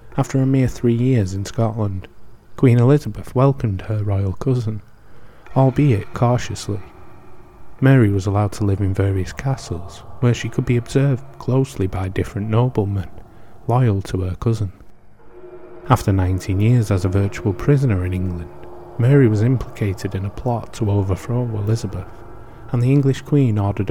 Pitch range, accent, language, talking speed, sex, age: 100-125 Hz, British, English, 150 wpm, male, 30-49